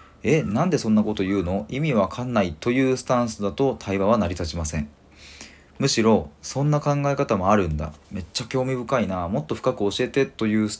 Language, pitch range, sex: Japanese, 80-120 Hz, male